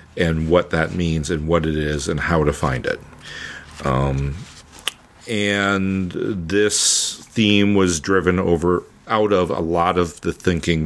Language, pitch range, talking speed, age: English, 80-90 Hz, 150 wpm, 50-69